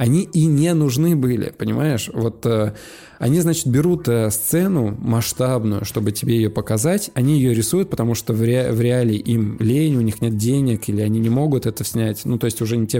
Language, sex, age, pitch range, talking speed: Russian, male, 20-39, 110-130 Hz, 200 wpm